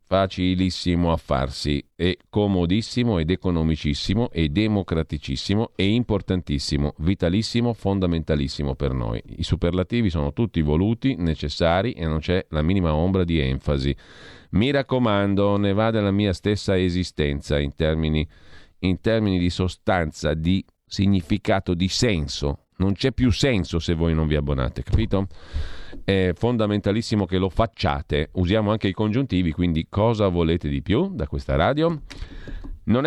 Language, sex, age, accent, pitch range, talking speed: Italian, male, 40-59, native, 80-105 Hz, 135 wpm